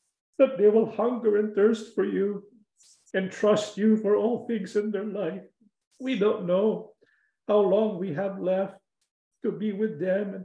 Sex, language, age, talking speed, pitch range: male, English, 50-69, 170 wpm, 205-250 Hz